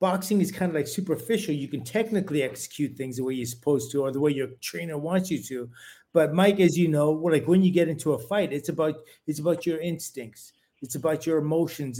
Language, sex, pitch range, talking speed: English, male, 135-165 Hz, 230 wpm